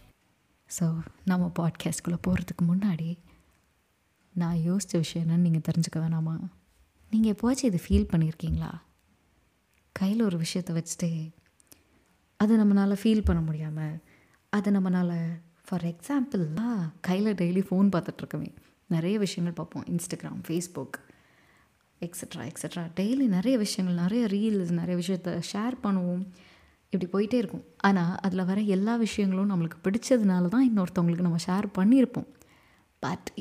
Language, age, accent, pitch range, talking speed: Tamil, 20-39, native, 170-210 Hz, 120 wpm